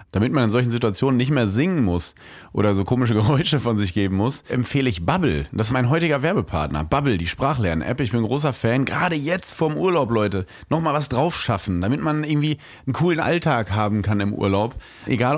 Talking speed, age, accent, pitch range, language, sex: 205 wpm, 30-49, German, 95-140 Hz, German, male